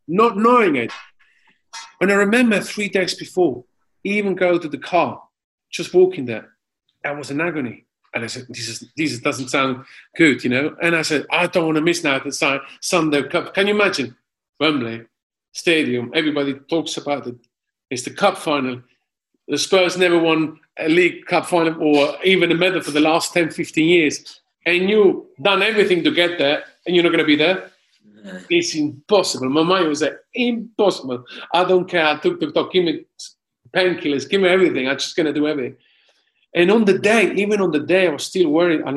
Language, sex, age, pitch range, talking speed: English, male, 40-59, 145-200 Hz, 195 wpm